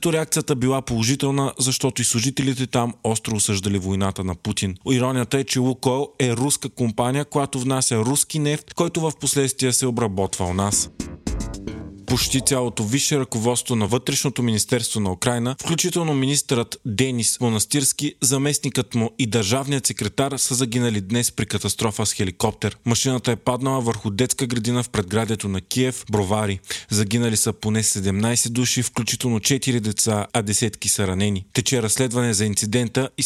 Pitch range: 110-130 Hz